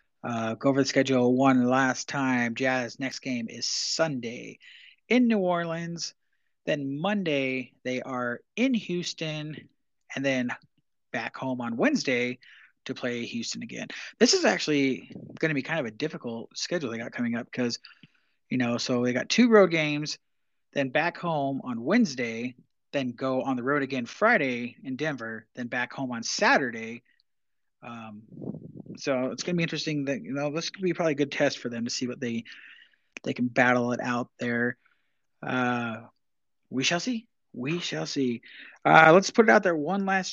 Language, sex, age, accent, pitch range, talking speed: English, male, 30-49, American, 125-165 Hz, 175 wpm